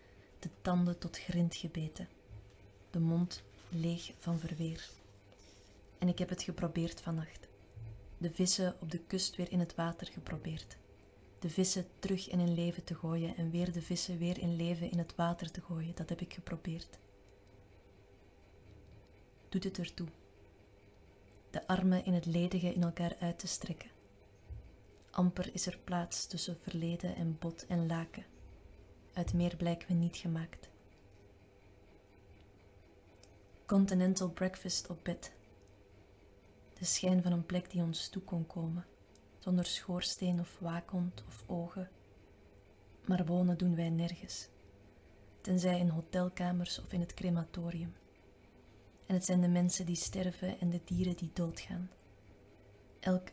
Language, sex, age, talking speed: Dutch, female, 20-39, 140 wpm